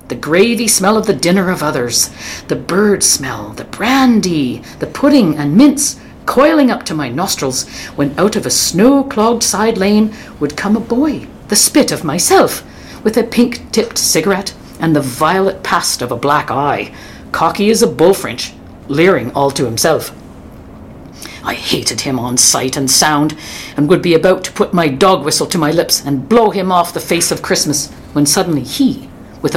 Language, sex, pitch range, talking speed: English, female, 140-215 Hz, 180 wpm